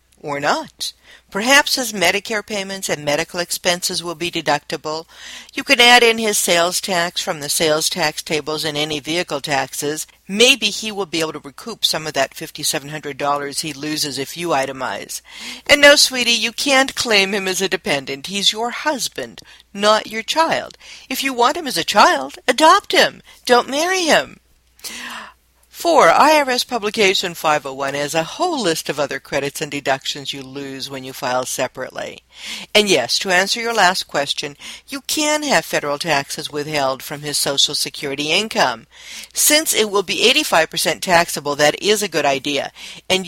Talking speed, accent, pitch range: 170 wpm, American, 150-225 Hz